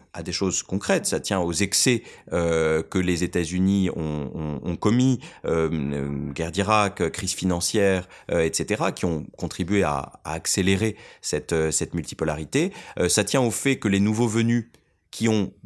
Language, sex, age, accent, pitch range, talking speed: French, male, 30-49, French, 90-115 Hz, 165 wpm